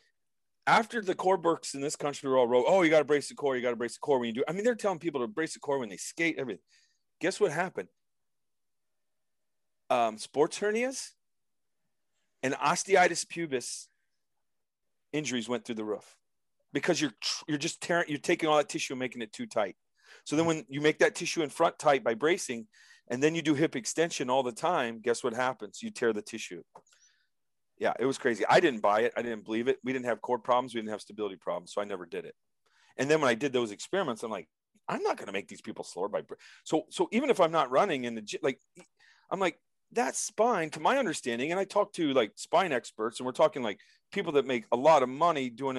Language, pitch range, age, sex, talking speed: Italian, 120-170 Hz, 40-59, male, 230 wpm